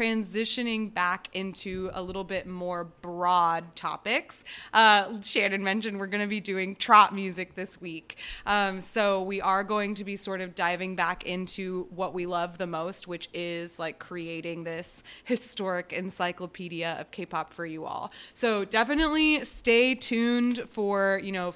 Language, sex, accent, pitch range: English, female, American, 175-220 Hz